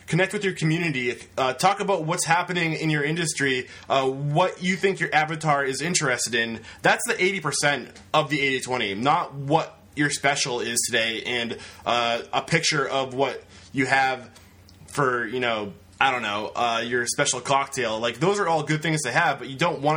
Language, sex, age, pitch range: English, male, 20-39, 125-160 Hz